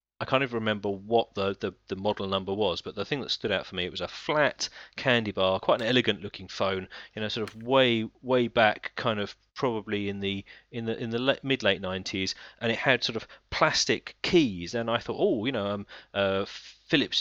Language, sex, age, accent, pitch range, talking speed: English, male, 30-49, British, 95-115 Hz, 225 wpm